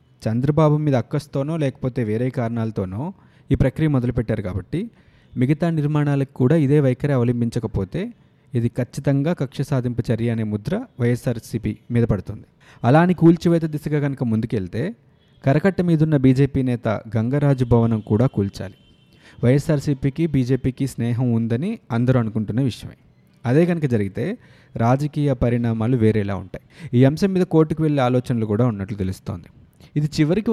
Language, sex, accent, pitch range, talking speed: Telugu, male, native, 115-150 Hz, 125 wpm